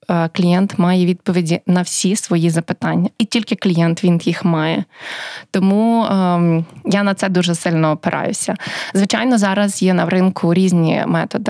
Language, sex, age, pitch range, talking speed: Ukrainian, female, 20-39, 165-195 Hz, 145 wpm